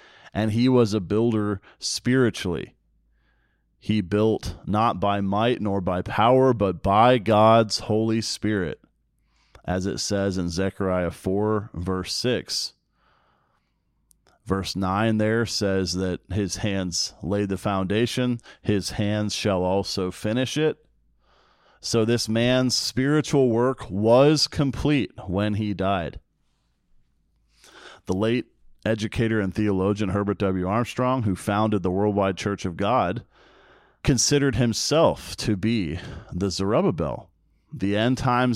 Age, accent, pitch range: 40-59, American, 95-115 Hz